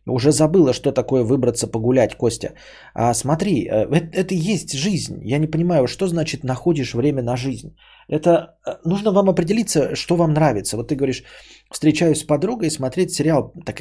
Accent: native